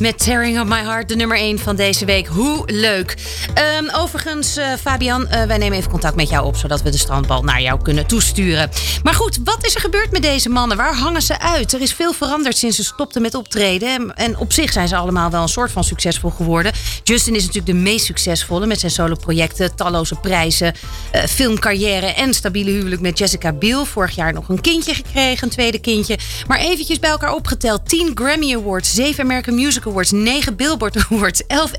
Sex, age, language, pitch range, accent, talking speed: female, 40-59, Dutch, 165-245 Hz, Dutch, 210 wpm